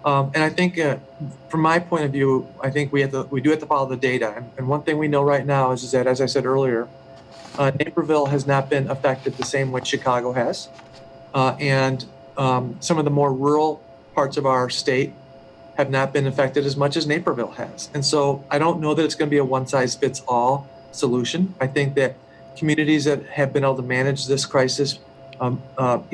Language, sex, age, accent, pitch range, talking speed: English, male, 40-59, American, 135-145 Hz, 220 wpm